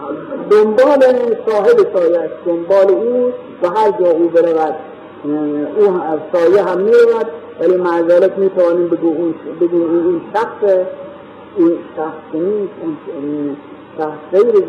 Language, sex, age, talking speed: Persian, male, 50-69, 105 wpm